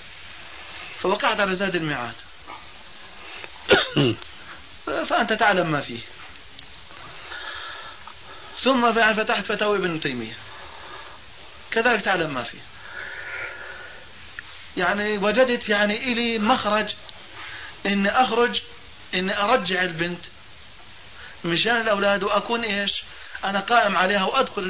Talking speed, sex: 85 wpm, male